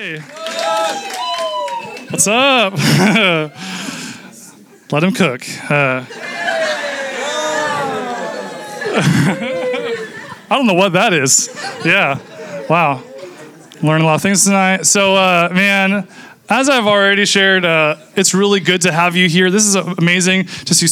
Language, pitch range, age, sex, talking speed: English, 160-205 Hz, 20-39, male, 115 wpm